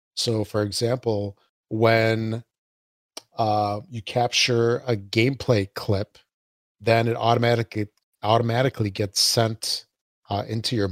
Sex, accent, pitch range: male, American, 100-115 Hz